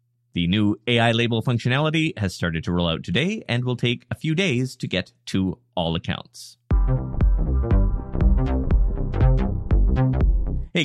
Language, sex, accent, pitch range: English, male, American, 95-130 Hz